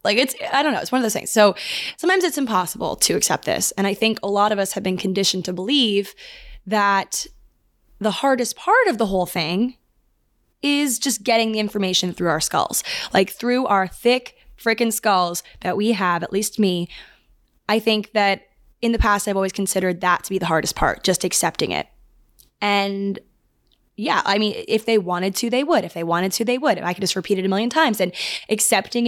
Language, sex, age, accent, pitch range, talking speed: English, female, 20-39, American, 185-230 Hz, 210 wpm